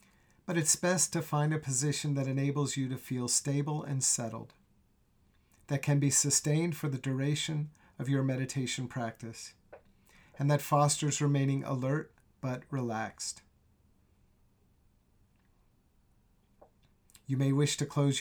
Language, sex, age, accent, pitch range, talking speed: English, male, 50-69, American, 120-145 Hz, 125 wpm